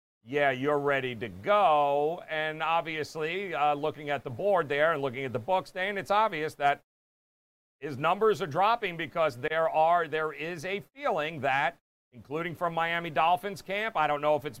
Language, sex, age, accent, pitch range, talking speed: English, male, 50-69, American, 140-175 Hz, 180 wpm